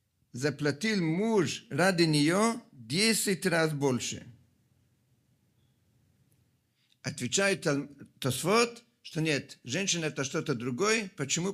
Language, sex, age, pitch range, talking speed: Russian, male, 50-69, 125-175 Hz, 90 wpm